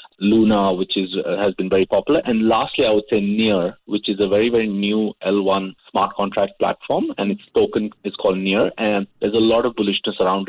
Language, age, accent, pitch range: English, 30-49, Indian, 95-110 Hz